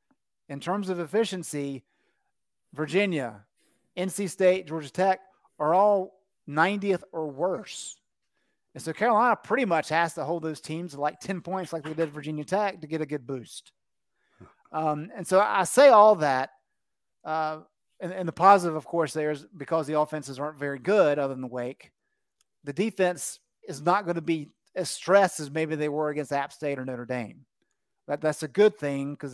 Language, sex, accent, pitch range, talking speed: English, male, American, 140-180 Hz, 180 wpm